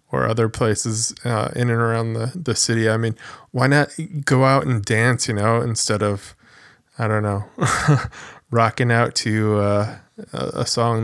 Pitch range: 105-125 Hz